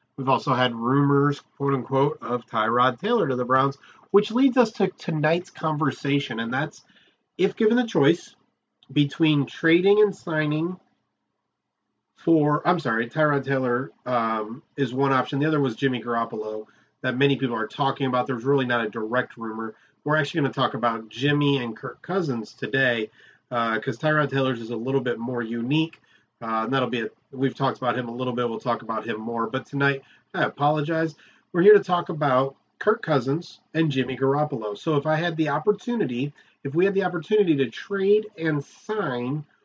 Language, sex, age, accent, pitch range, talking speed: English, male, 30-49, American, 125-155 Hz, 180 wpm